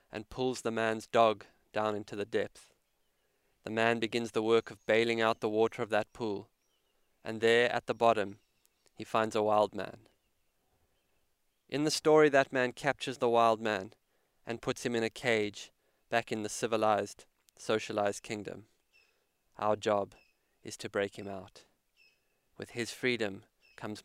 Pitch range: 105-120 Hz